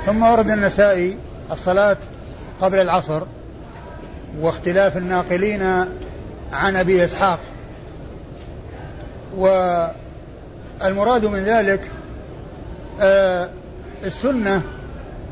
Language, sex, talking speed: Arabic, male, 60 wpm